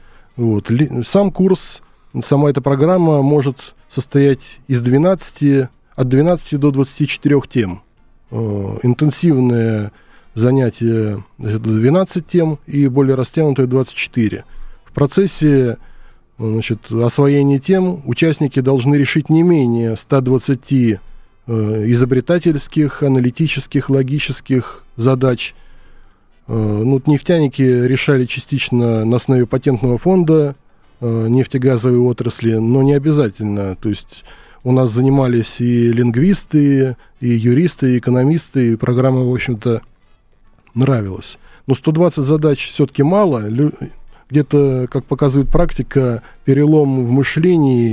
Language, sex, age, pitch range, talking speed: Russian, male, 20-39, 120-145 Hz, 100 wpm